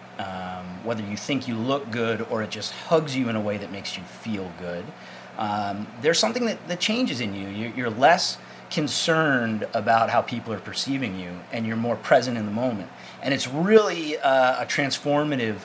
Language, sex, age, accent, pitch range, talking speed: English, male, 30-49, American, 105-140 Hz, 195 wpm